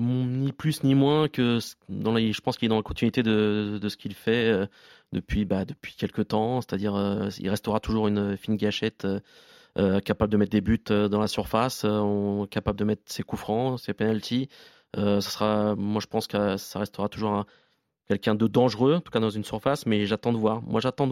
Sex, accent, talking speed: male, French, 215 wpm